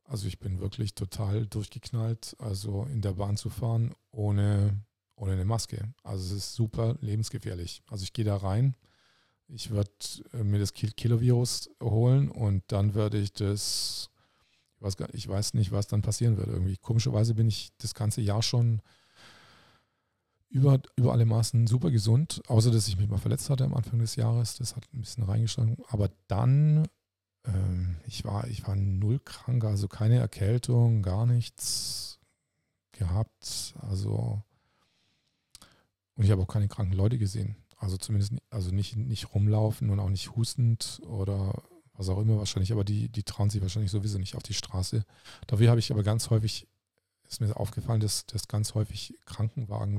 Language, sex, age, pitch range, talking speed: German, male, 40-59, 100-115 Hz, 170 wpm